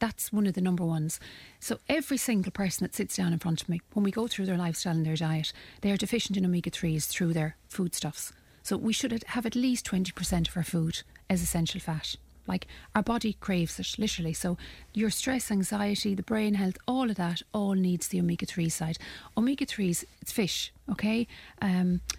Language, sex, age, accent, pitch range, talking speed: English, female, 40-59, Irish, 175-225 Hz, 195 wpm